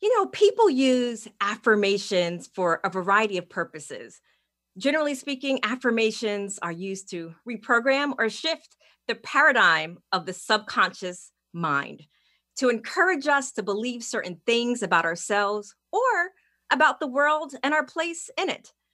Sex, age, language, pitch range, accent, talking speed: female, 30-49, English, 180-245 Hz, American, 135 wpm